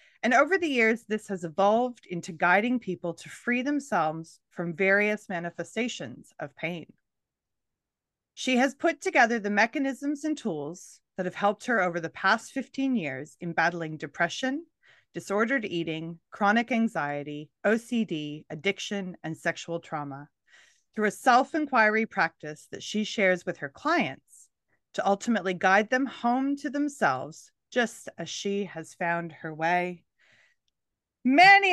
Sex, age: female, 30-49